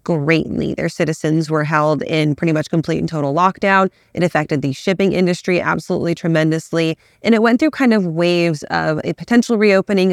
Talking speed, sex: 180 wpm, female